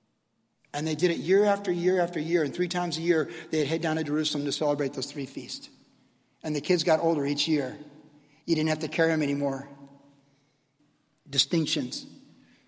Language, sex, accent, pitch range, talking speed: English, male, American, 150-185 Hz, 185 wpm